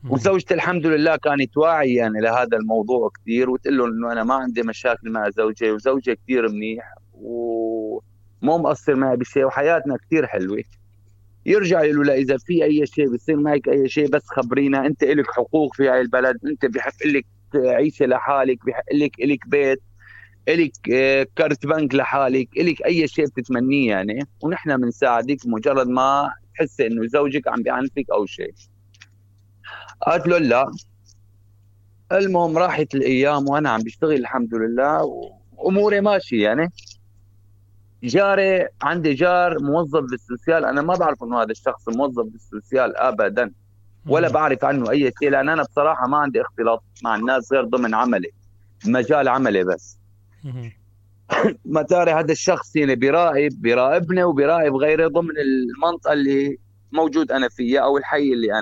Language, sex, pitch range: Arabic, male, 110-150 Hz